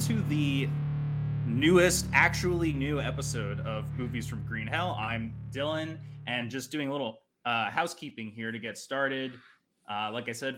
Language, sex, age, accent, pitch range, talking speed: English, male, 20-39, American, 115-150 Hz, 160 wpm